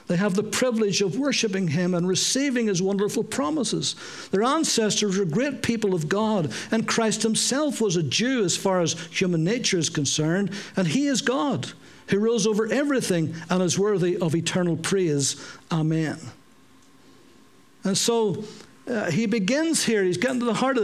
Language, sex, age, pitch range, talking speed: English, male, 60-79, 170-225 Hz, 170 wpm